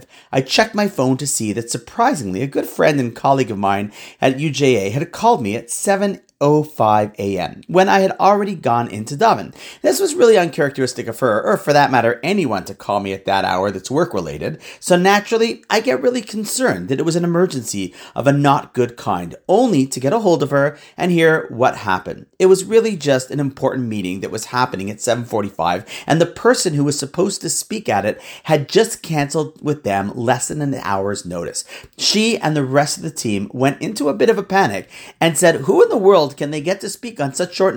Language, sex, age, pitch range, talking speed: English, male, 40-59, 125-185 Hz, 220 wpm